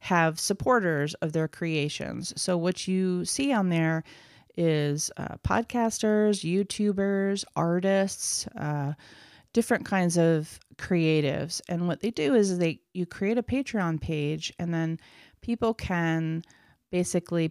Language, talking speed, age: English, 125 wpm, 30-49